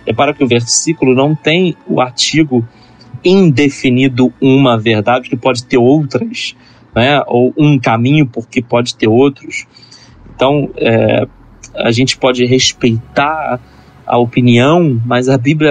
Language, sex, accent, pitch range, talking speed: Portuguese, male, Brazilian, 120-145 Hz, 135 wpm